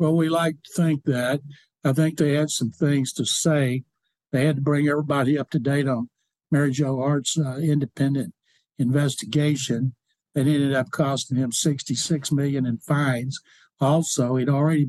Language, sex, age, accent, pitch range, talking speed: English, male, 60-79, American, 145-175 Hz, 165 wpm